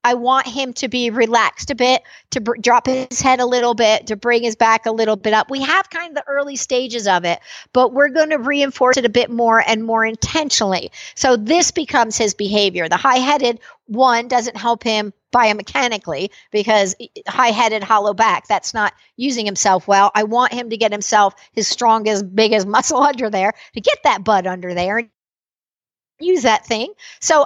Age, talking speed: 50-69, 190 wpm